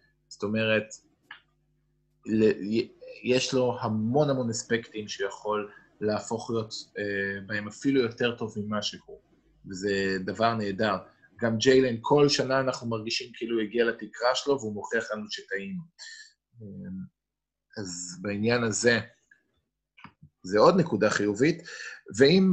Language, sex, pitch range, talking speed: Hebrew, male, 105-150 Hz, 110 wpm